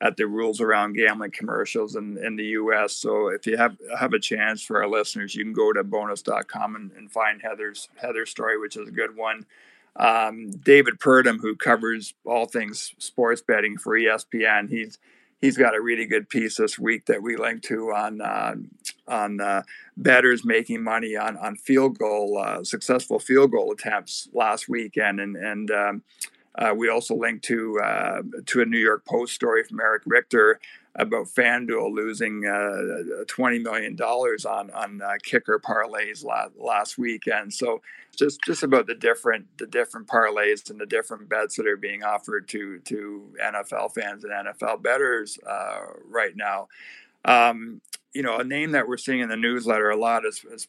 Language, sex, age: English, male, 50-69